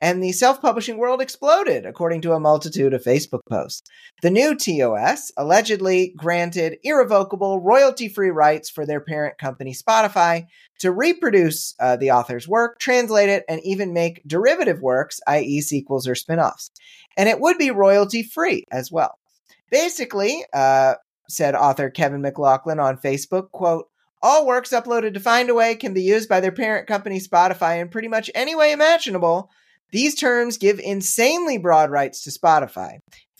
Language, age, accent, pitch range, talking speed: English, 30-49, American, 155-230 Hz, 155 wpm